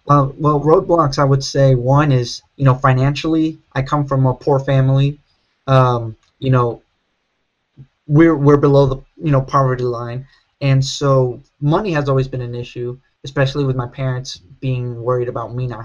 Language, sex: English, male